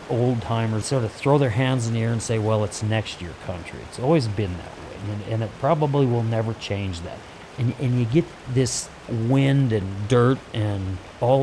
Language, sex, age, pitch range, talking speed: English, male, 40-59, 100-125 Hz, 210 wpm